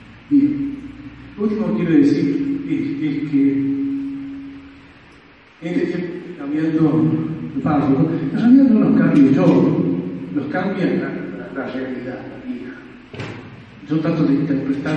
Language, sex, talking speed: Spanish, male, 125 wpm